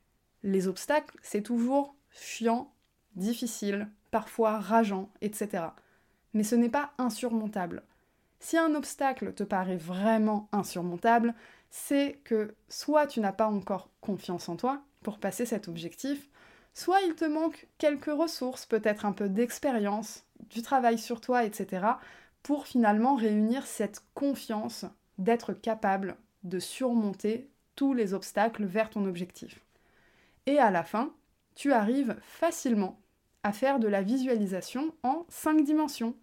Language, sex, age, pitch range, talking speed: French, female, 20-39, 210-265 Hz, 135 wpm